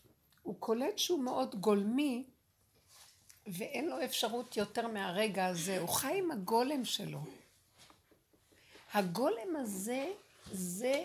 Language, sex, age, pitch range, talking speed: Hebrew, female, 60-79, 200-265 Hz, 105 wpm